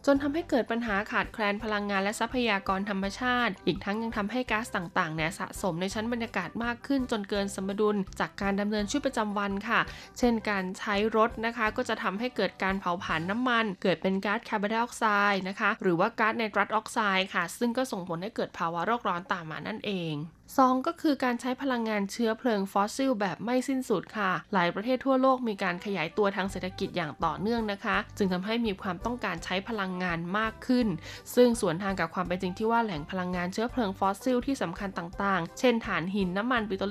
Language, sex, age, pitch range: Thai, female, 20-39, 190-230 Hz